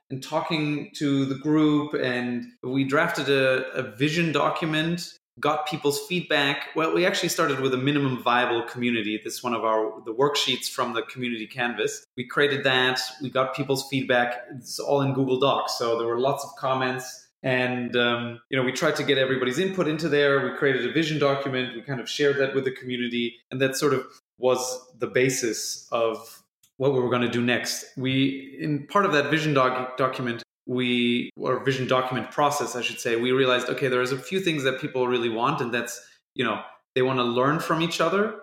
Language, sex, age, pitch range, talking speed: English, male, 20-39, 125-145 Hz, 205 wpm